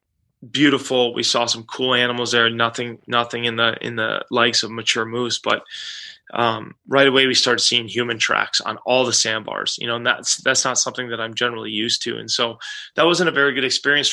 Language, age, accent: English, 20-39, American